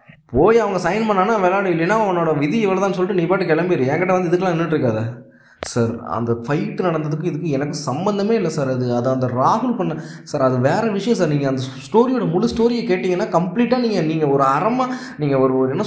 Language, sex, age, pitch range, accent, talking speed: Tamil, male, 20-39, 135-220 Hz, native, 195 wpm